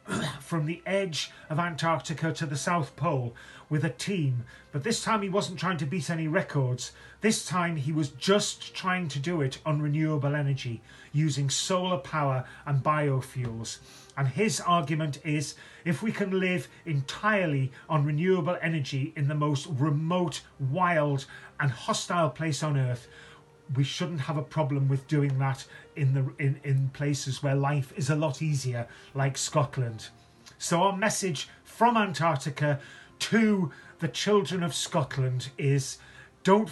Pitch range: 135-170 Hz